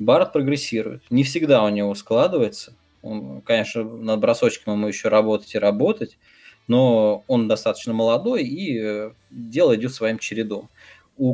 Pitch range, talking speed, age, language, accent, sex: 105-140 Hz, 140 wpm, 20-39, Russian, native, male